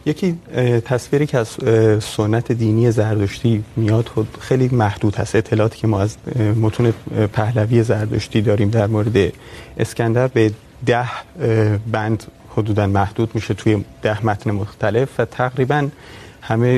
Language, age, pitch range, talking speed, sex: Urdu, 30-49, 105-120 Hz, 125 wpm, male